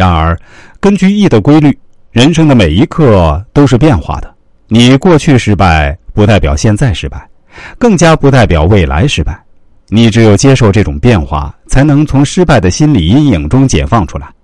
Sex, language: male, Chinese